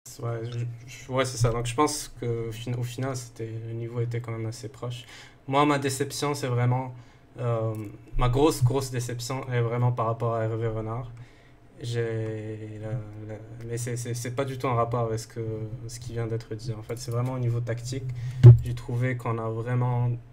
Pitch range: 115-130 Hz